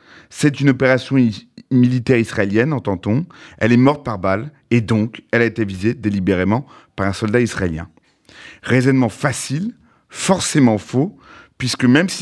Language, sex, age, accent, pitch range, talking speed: French, male, 30-49, French, 105-135 Hz, 140 wpm